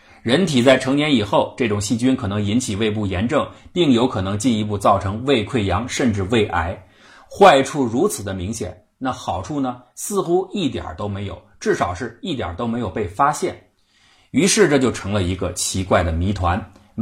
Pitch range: 95-130 Hz